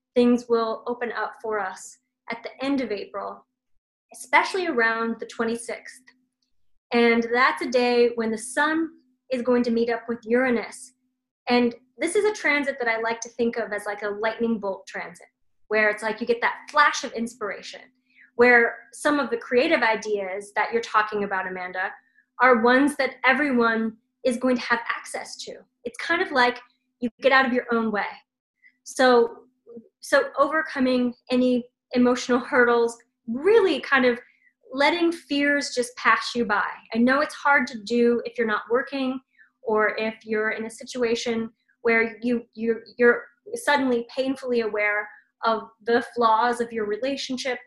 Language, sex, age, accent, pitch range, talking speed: English, female, 20-39, American, 225-255 Hz, 165 wpm